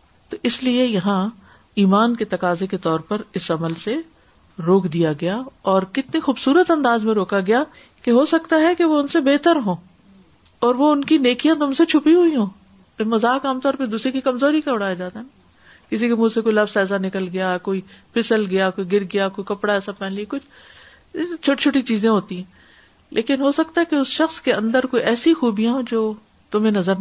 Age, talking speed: 50-69, 205 wpm